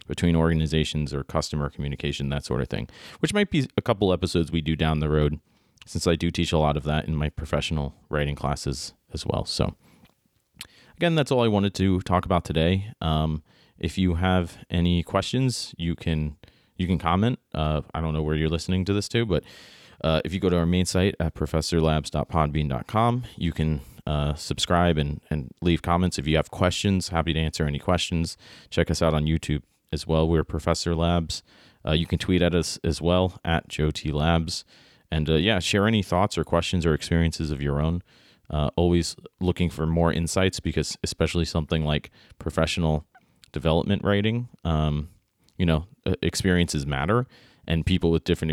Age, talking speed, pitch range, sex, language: 30-49, 185 wpm, 75-90 Hz, male, English